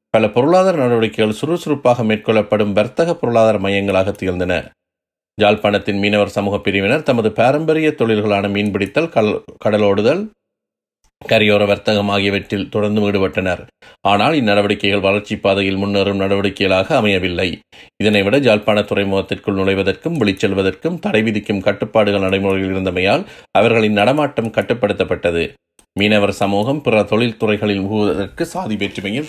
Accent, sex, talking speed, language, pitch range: native, male, 100 wpm, Tamil, 100-110 Hz